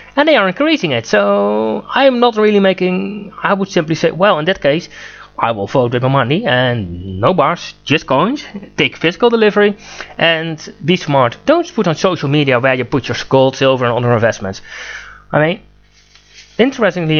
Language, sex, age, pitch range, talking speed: English, male, 20-39, 130-180 Hz, 185 wpm